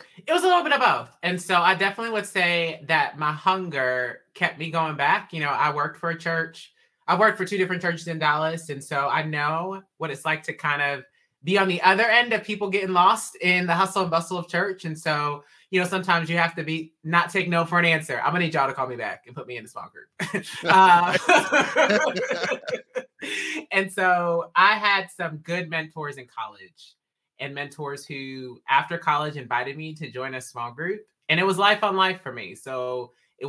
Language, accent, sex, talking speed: English, American, male, 220 wpm